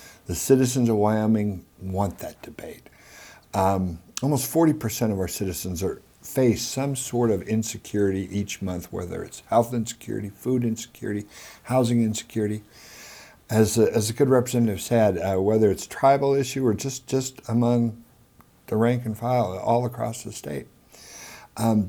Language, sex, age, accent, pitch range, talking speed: English, male, 60-79, American, 100-120 Hz, 150 wpm